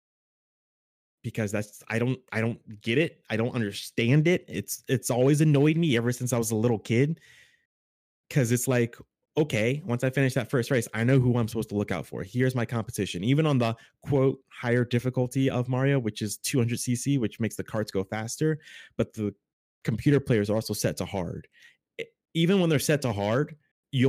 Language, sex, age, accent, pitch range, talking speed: English, male, 20-39, American, 105-135 Hz, 200 wpm